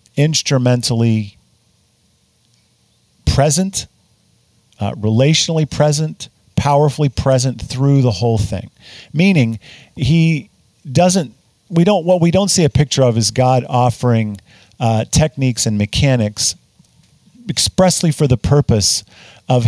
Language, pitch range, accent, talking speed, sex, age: English, 110-135 Hz, American, 105 wpm, male, 50-69